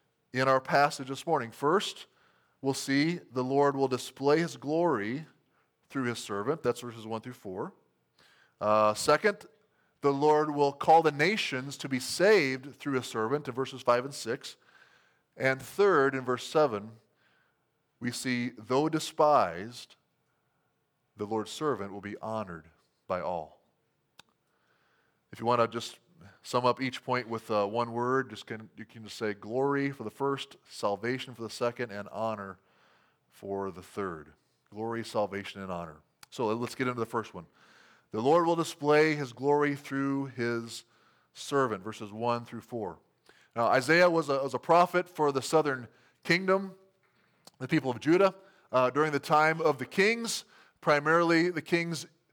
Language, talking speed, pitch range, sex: English, 160 wpm, 115-155 Hz, male